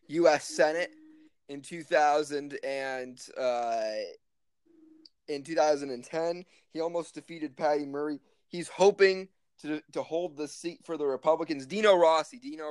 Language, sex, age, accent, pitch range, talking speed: English, male, 20-39, American, 140-175 Hz, 125 wpm